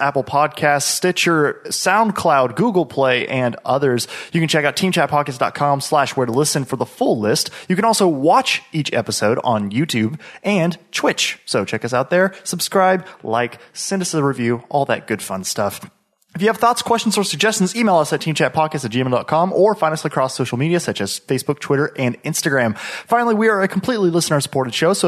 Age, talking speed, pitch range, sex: 30-49, 190 wpm, 130-175 Hz, male